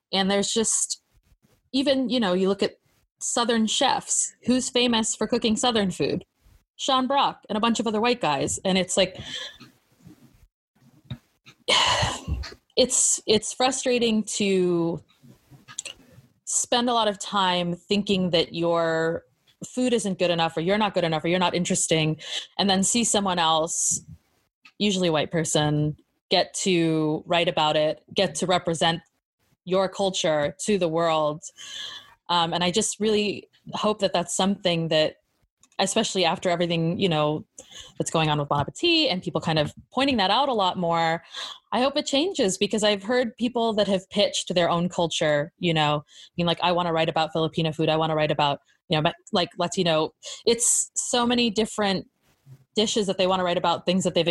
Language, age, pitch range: English, 20-39, 165-215 Hz